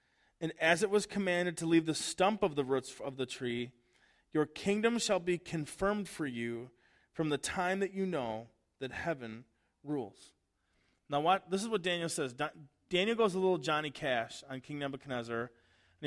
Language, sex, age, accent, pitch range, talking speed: English, male, 30-49, American, 145-200 Hz, 180 wpm